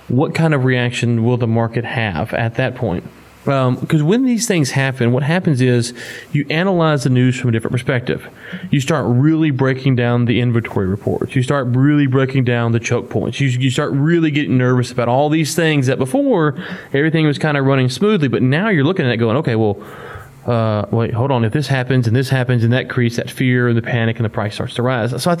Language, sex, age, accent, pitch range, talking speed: English, male, 30-49, American, 120-145 Hz, 230 wpm